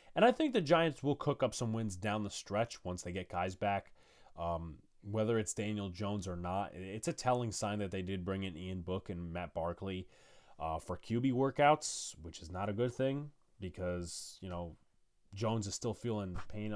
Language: English